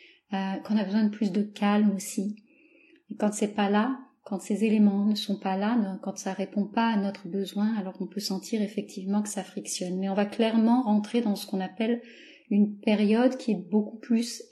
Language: French